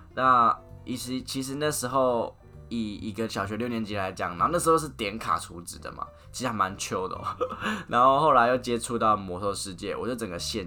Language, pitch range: Chinese, 95-125 Hz